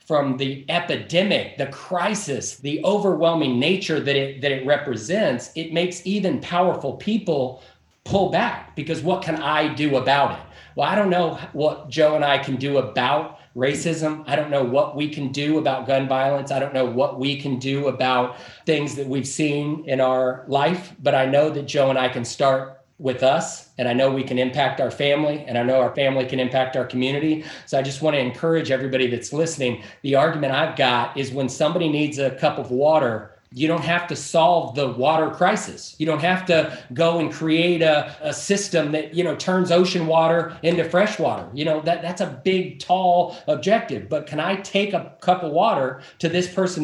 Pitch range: 135-165 Hz